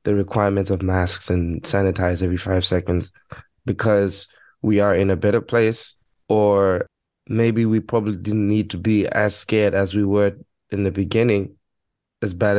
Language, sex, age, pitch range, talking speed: English, male, 20-39, 95-110 Hz, 160 wpm